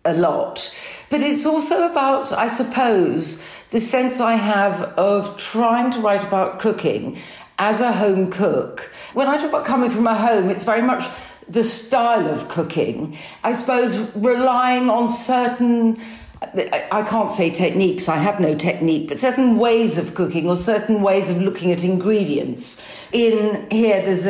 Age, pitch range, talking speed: 50-69, 180-230 Hz, 160 wpm